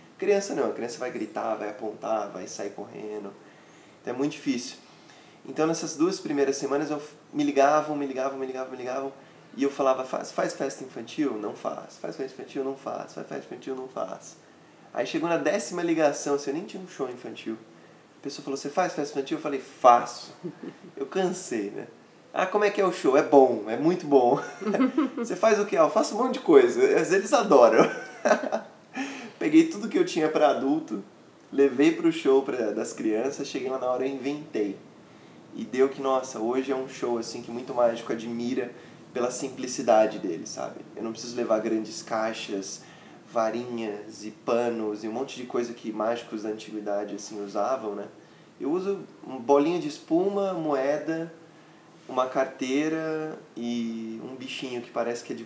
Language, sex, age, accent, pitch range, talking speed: Portuguese, male, 20-39, Brazilian, 115-170 Hz, 185 wpm